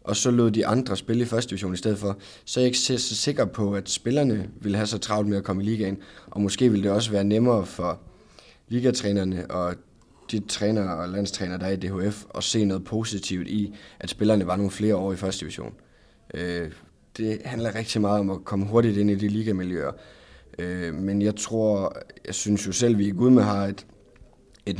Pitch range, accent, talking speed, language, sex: 95-110 Hz, native, 210 wpm, Danish, male